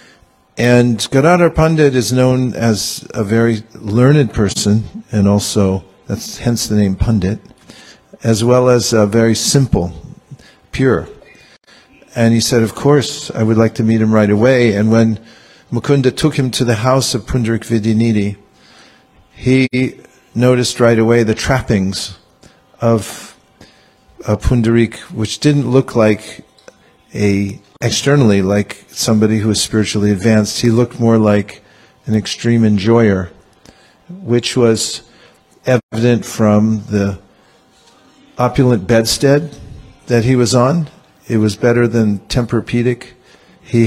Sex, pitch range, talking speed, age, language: male, 105-125 Hz, 125 wpm, 50-69, English